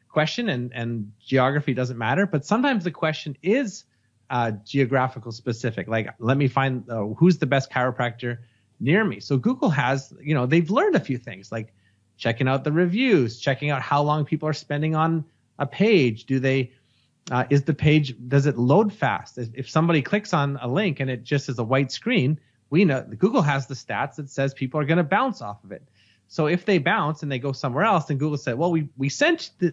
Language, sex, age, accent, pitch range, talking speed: English, male, 30-49, American, 120-160 Hz, 215 wpm